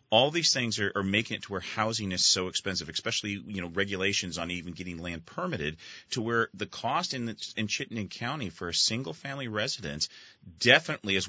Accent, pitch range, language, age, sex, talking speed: American, 90-110 Hz, English, 30-49, male, 200 wpm